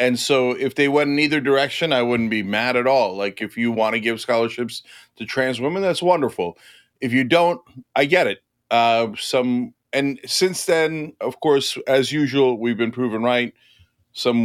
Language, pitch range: English, 115-140 Hz